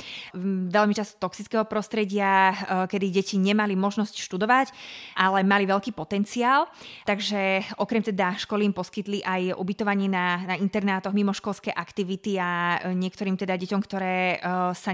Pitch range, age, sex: 180-200 Hz, 20-39, female